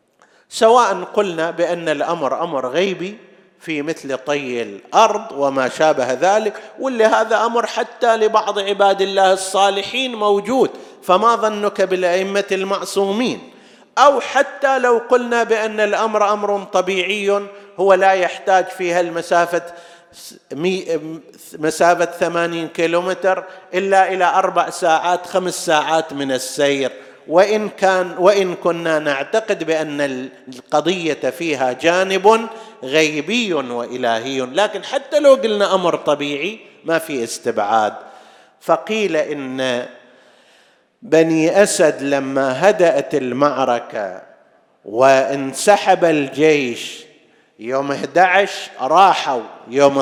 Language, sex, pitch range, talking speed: Arabic, male, 155-200 Hz, 100 wpm